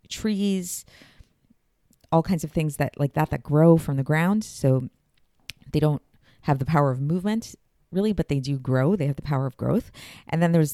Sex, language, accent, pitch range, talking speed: female, English, American, 140-170 Hz, 195 wpm